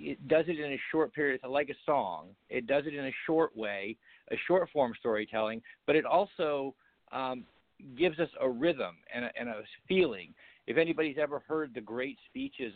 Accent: American